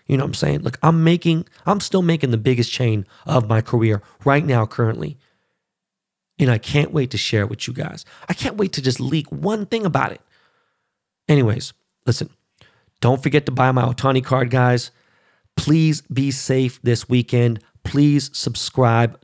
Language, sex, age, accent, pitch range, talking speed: English, male, 40-59, American, 120-150 Hz, 175 wpm